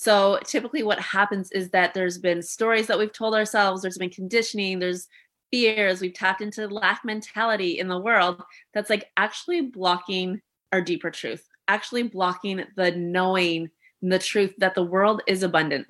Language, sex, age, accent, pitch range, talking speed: English, female, 20-39, American, 180-215 Hz, 165 wpm